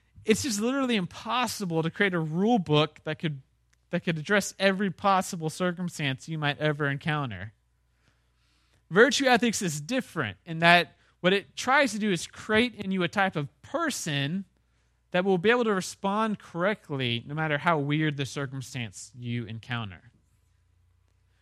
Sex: male